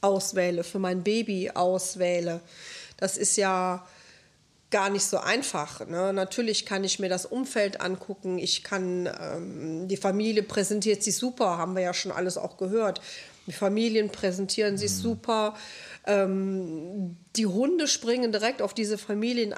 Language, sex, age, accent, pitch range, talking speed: German, female, 40-59, German, 190-220 Hz, 145 wpm